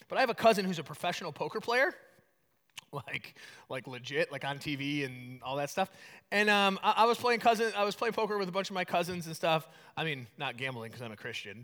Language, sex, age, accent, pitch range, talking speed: English, male, 30-49, American, 165-235 Hz, 240 wpm